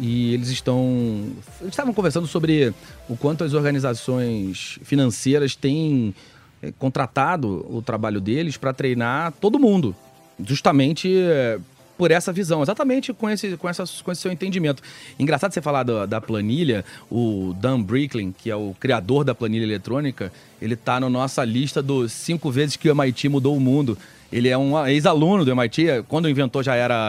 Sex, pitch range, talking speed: male, 115-150 Hz, 165 wpm